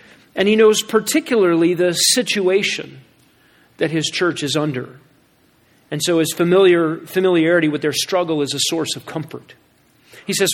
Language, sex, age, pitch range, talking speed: English, male, 40-59, 155-195 Hz, 140 wpm